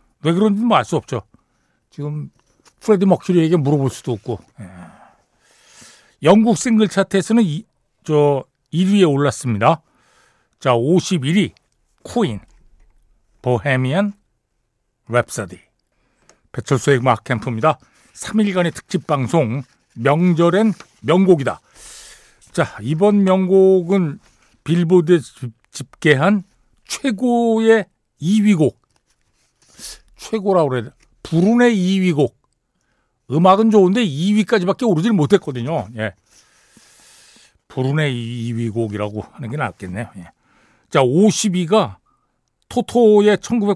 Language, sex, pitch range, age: Korean, male, 130-200 Hz, 60-79